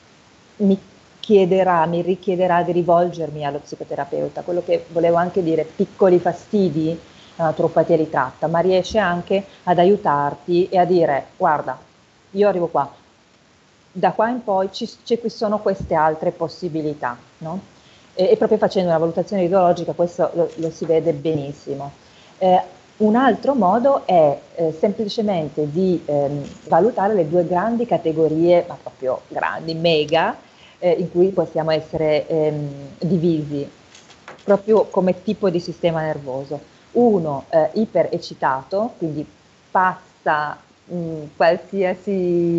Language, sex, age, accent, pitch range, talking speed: Italian, female, 40-59, native, 160-195 Hz, 130 wpm